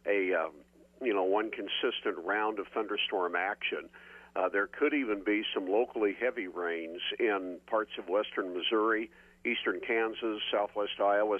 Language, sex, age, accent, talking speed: English, male, 50-69, American, 145 wpm